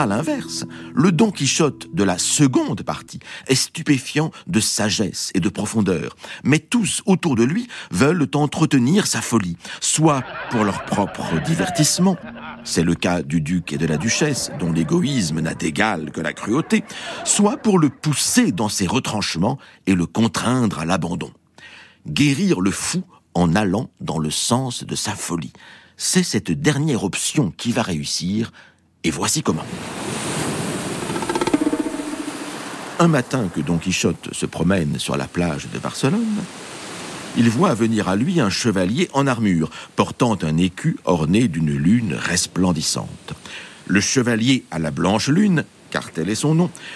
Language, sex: French, male